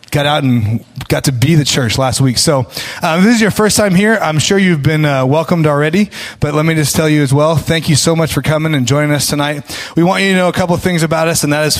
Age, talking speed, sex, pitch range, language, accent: 20-39, 305 wpm, male, 130-160 Hz, English, American